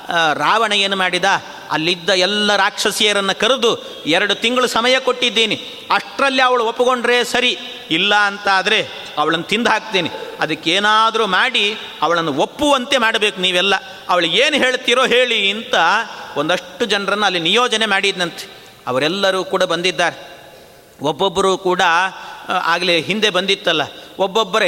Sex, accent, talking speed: male, native, 105 wpm